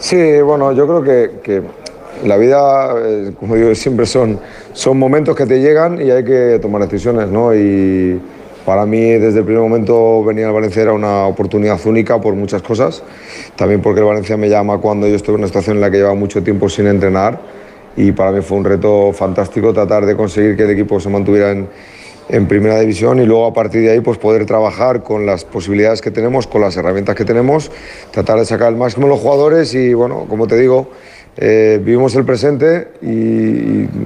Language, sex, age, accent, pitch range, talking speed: Spanish, male, 40-59, Spanish, 105-125 Hz, 205 wpm